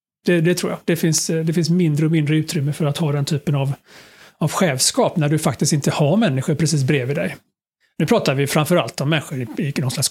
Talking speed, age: 230 wpm, 30-49